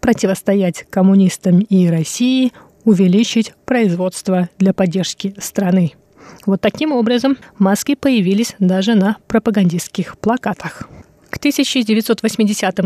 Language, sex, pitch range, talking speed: Russian, female, 190-230 Hz, 95 wpm